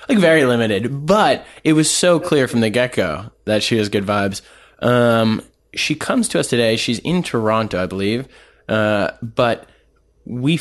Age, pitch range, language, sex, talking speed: 20-39, 100-125 Hz, English, male, 170 wpm